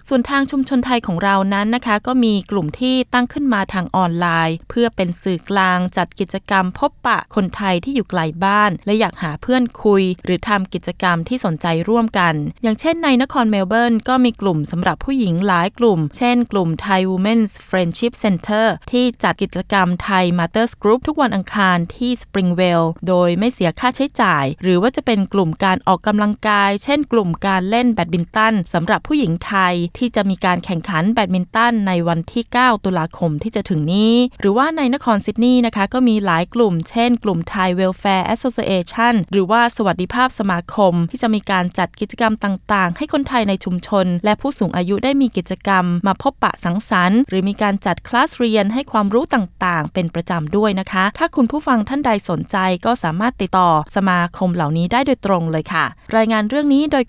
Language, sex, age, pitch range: Thai, female, 20-39, 180-235 Hz